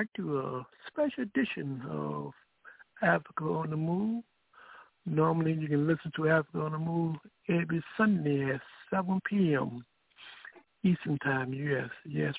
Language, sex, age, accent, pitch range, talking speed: English, male, 60-79, American, 135-185 Hz, 130 wpm